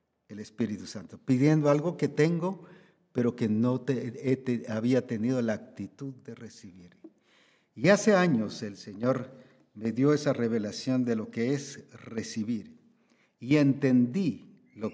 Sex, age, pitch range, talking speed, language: male, 50-69, 115-165 Hz, 135 wpm, Spanish